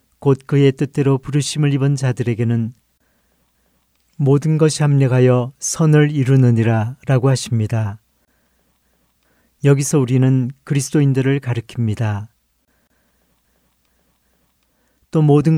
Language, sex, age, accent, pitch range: Korean, male, 40-59, native, 115-145 Hz